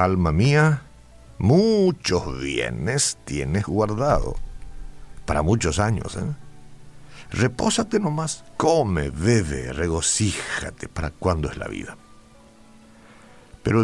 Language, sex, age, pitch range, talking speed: Spanish, male, 60-79, 75-110 Hz, 90 wpm